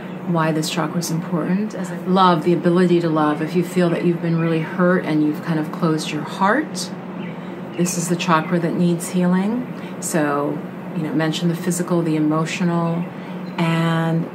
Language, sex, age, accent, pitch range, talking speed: English, female, 40-59, American, 165-185 Hz, 170 wpm